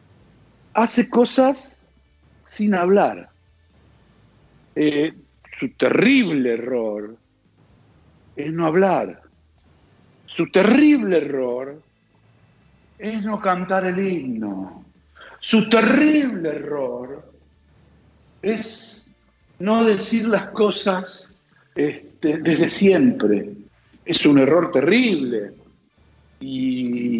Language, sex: Spanish, male